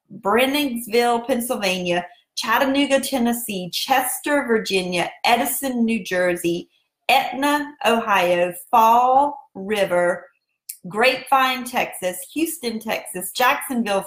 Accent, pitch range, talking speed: American, 195-255 Hz, 75 wpm